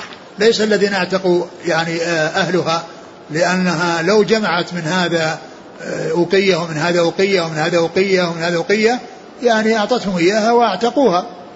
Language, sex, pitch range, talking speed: Arabic, male, 175-205 Hz, 125 wpm